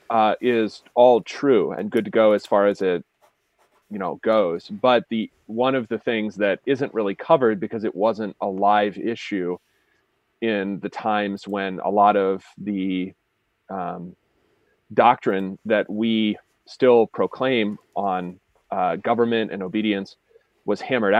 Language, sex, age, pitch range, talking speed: English, male, 30-49, 100-125 Hz, 145 wpm